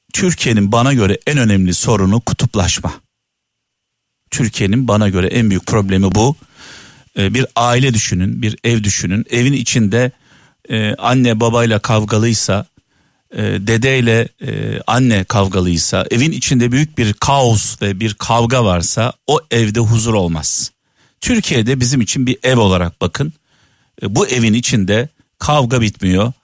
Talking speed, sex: 125 wpm, male